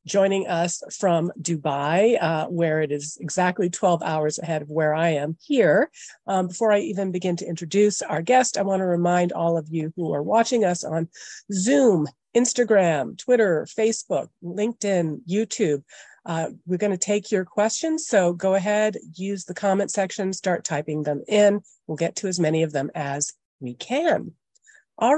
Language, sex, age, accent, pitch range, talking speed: English, female, 40-59, American, 165-225 Hz, 170 wpm